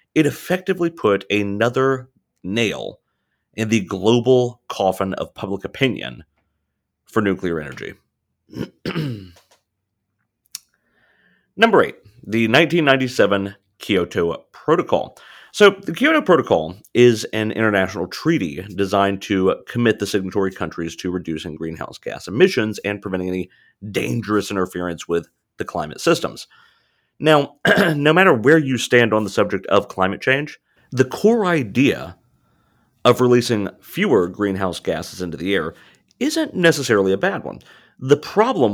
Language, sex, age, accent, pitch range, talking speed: English, male, 30-49, American, 95-130 Hz, 120 wpm